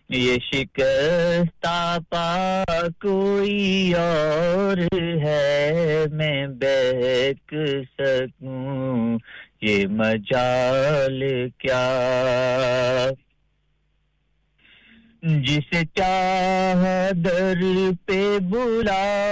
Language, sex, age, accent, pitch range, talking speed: English, male, 50-69, Indian, 130-180 Hz, 35 wpm